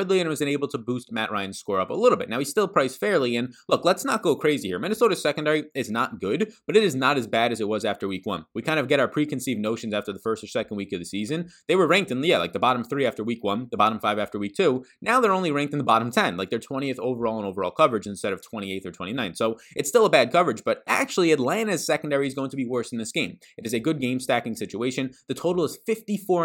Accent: American